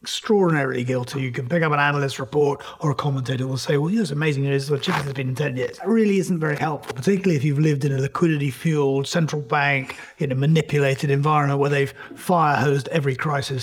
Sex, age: male, 30-49